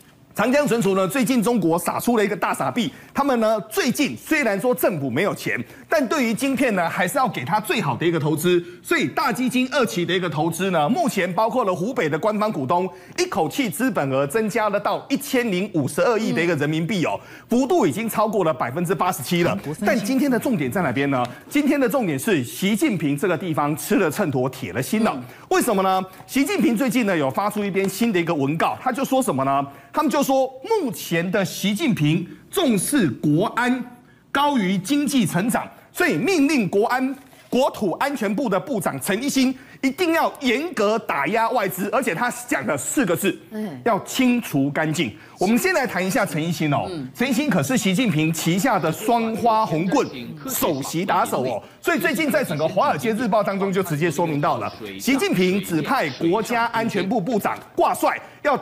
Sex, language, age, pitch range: male, Chinese, 30-49, 170-250 Hz